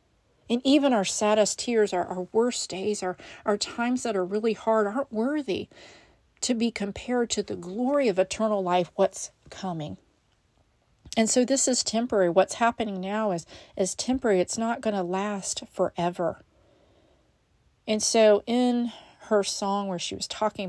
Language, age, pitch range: English, 40-59, 170-220 Hz